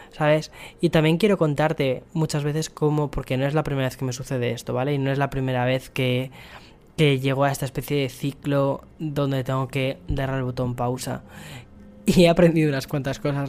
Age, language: 10-29, Spanish